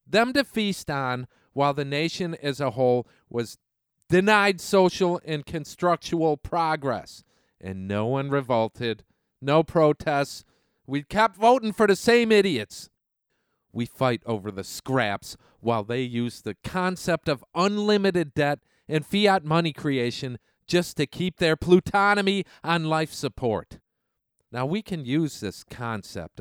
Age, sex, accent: 40-59, male, American